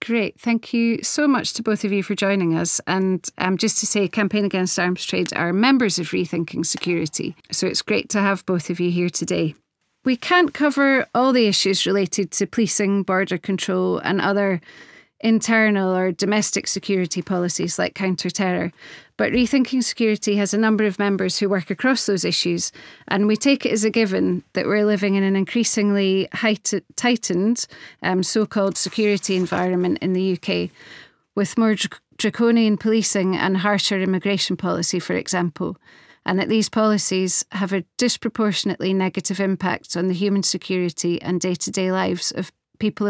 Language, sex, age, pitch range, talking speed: English, female, 30-49, 185-220 Hz, 165 wpm